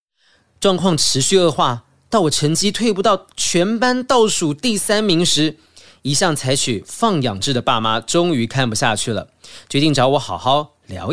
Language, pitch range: Chinese, 125-195 Hz